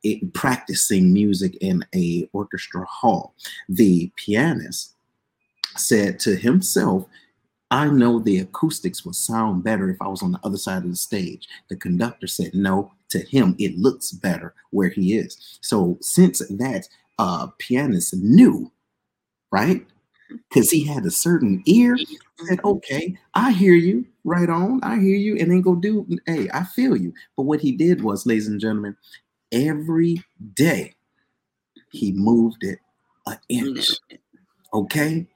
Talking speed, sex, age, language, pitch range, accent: 150 wpm, male, 30-49, English, 130-215 Hz, American